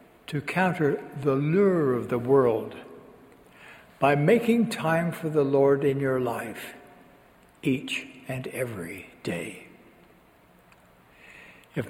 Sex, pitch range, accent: male, 130-165 Hz, American